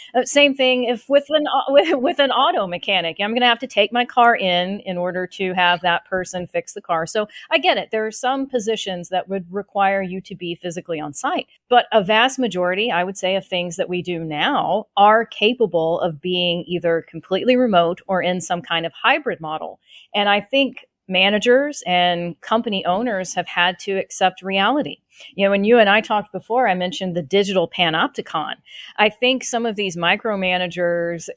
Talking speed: 200 wpm